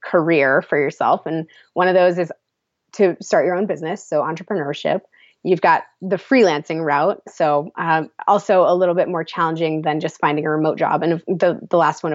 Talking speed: 195 wpm